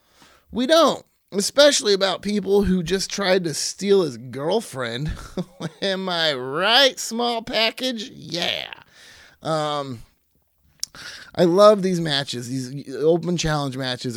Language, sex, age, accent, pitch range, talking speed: English, male, 30-49, American, 125-170 Hz, 115 wpm